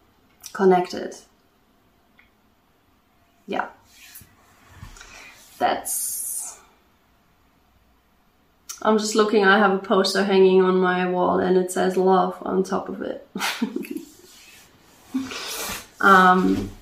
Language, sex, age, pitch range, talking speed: German, female, 20-39, 185-205 Hz, 80 wpm